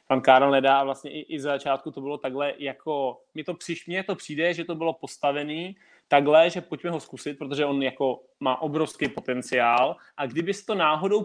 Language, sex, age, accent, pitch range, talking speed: Czech, male, 20-39, native, 135-160 Hz, 190 wpm